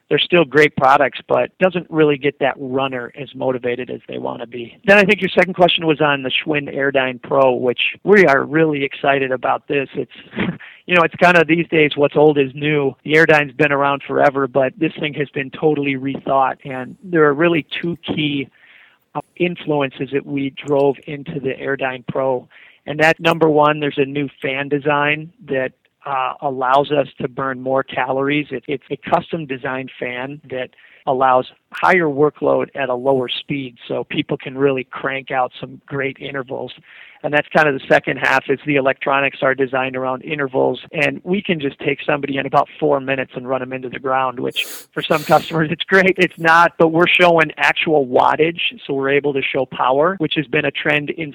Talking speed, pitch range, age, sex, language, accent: 195 wpm, 135-155 Hz, 40-59, male, English, American